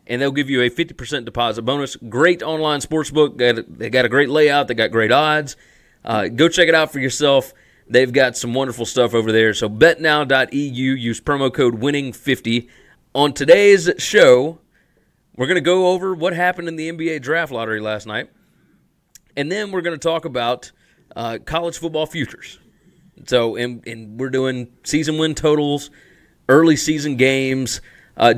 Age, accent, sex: 30-49, American, male